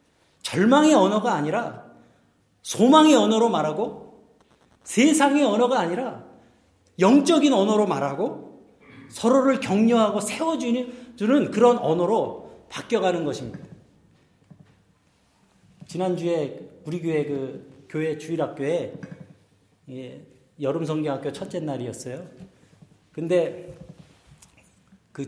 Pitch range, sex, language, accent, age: 145-235 Hz, male, Korean, native, 40-59